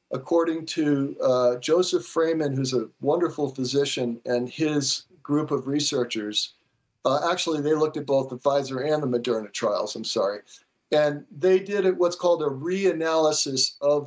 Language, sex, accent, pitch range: English, male, American, 140-170 Hz